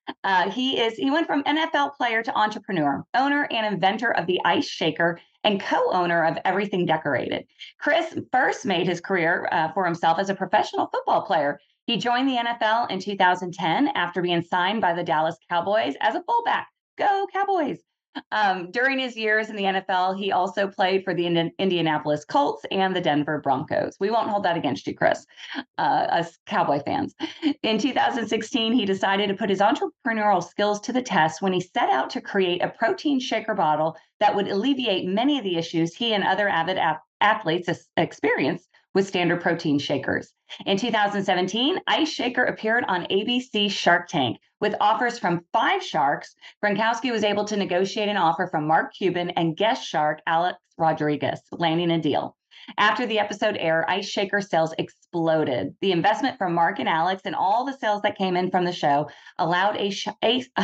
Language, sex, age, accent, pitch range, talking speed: English, female, 30-49, American, 175-230 Hz, 180 wpm